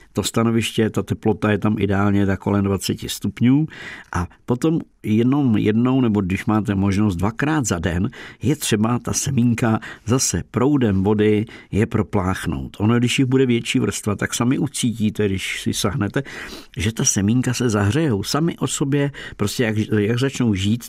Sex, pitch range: male, 100-120 Hz